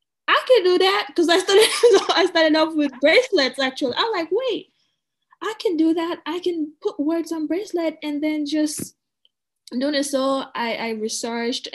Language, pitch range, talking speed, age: English, 205-295 Hz, 175 wpm, 10-29